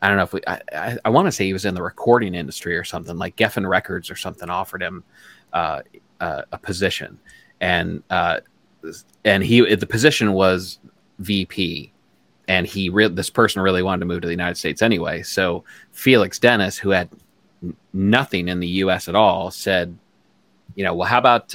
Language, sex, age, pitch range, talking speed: English, male, 30-49, 95-115 Hz, 190 wpm